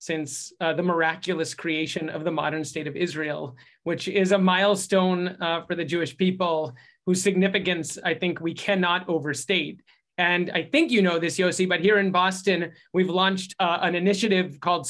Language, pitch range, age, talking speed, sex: English, 170-200 Hz, 30-49, 175 wpm, male